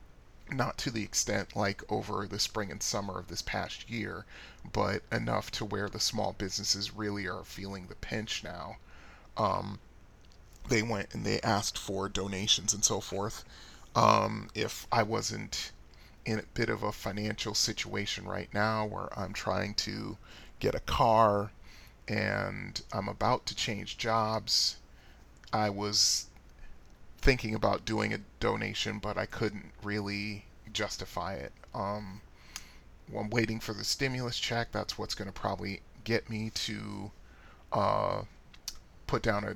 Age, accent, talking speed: 30-49, American, 145 wpm